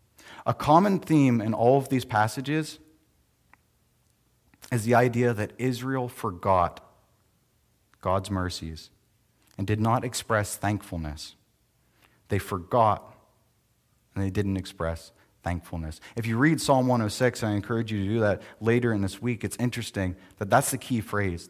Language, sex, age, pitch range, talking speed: English, male, 30-49, 100-125 Hz, 140 wpm